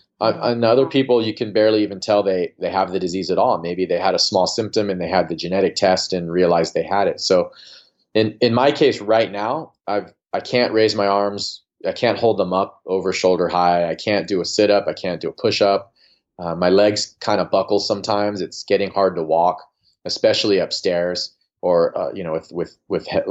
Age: 30-49